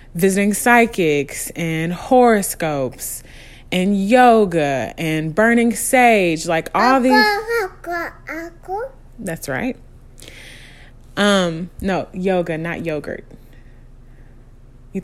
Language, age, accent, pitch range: English, 20-39, American, 155-195 Hz